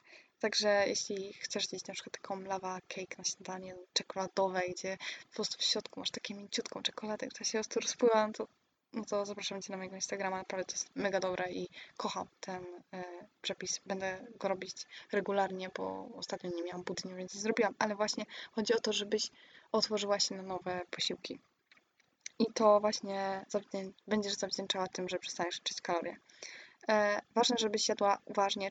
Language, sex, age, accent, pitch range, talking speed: Polish, female, 10-29, native, 190-215 Hz, 170 wpm